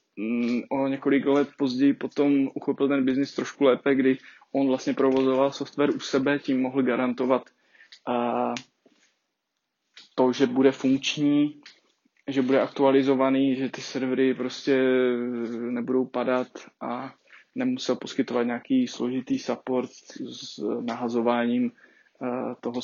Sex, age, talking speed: male, 20-39, 110 wpm